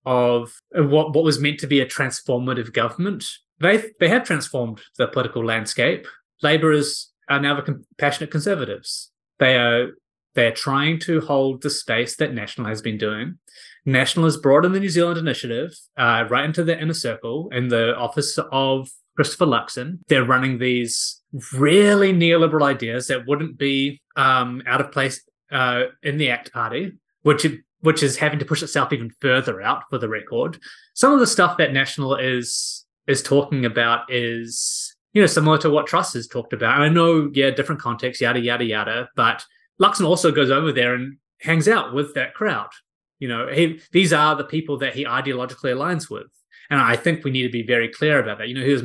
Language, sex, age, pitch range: English, male, 20-39, 125-160 Hz